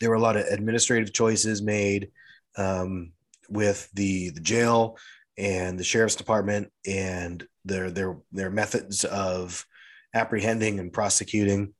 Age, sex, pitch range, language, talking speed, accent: 30-49, male, 95-110 Hz, English, 130 wpm, American